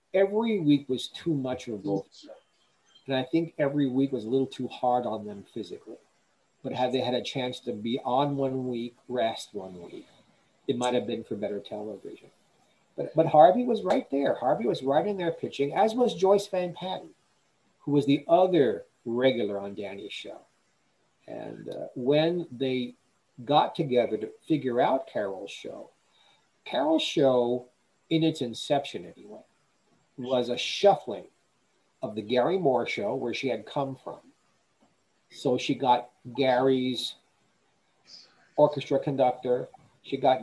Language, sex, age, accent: English, male, 50-69, American